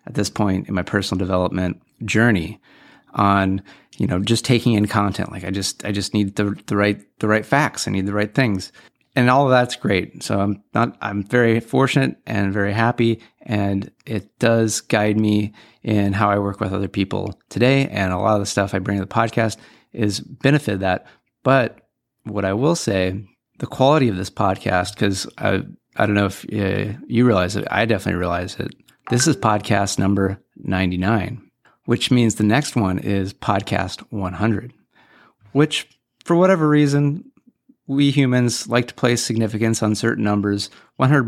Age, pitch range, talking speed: 30-49, 100-120 Hz, 180 wpm